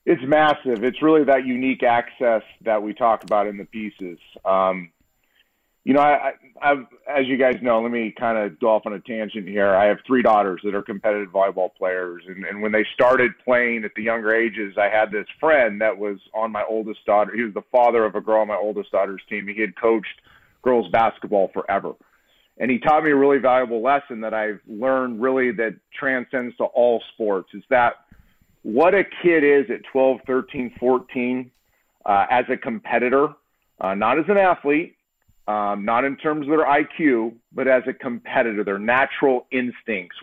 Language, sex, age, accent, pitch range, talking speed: English, male, 40-59, American, 105-135 Hz, 190 wpm